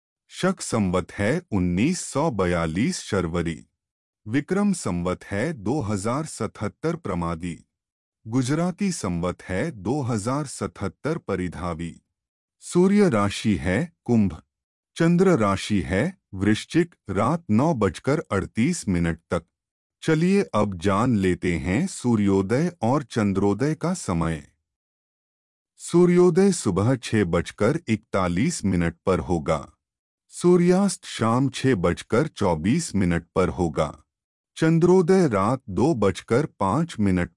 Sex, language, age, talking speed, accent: male, Hindi, 30-49, 100 wpm, native